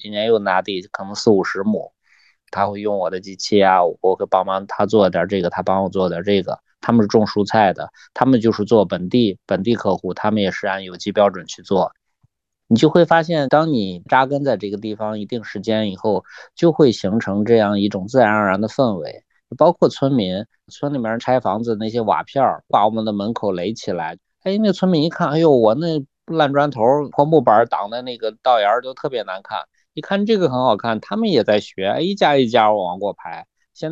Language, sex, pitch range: Chinese, male, 100-135 Hz